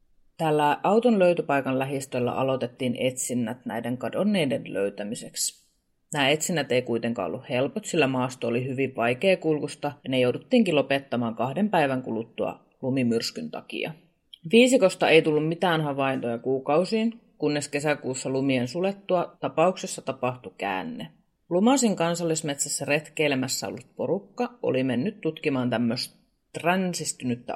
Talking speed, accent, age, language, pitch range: 115 wpm, native, 30-49, Finnish, 130-170 Hz